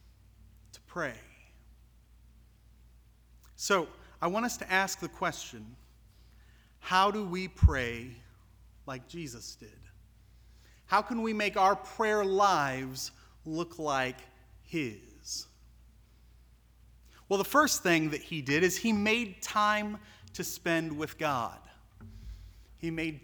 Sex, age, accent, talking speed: male, 30-49, American, 110 wpm